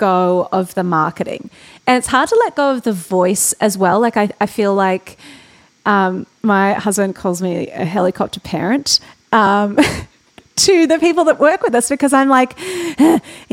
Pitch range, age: 185-250 Hz, 30-49